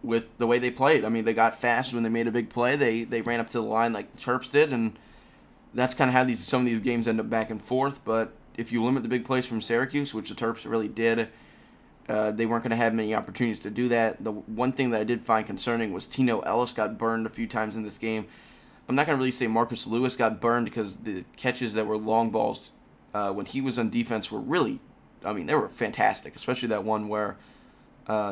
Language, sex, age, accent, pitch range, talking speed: English, male, 20-39, American, 110-125 Hz, 260 wpm